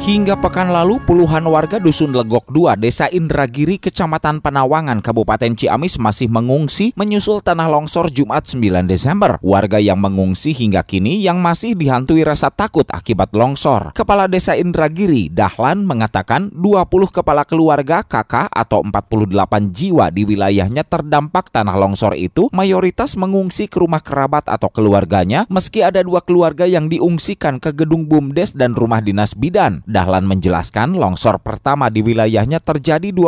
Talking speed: 140 wpm